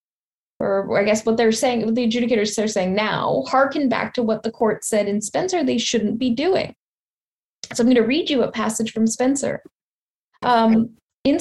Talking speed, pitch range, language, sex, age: 195 wpm, 215-275 Hz, English, female, 10-29